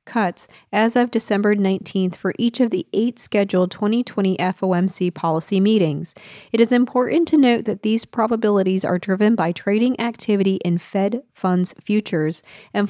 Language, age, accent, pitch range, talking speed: English, 30-49, American, 185-230 Hz, 155 wpm